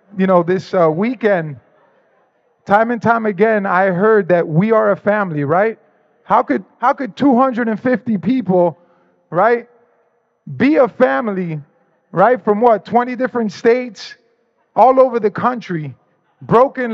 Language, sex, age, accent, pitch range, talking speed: English, male, 20-39, American, 175-235 Hz, 135 wpm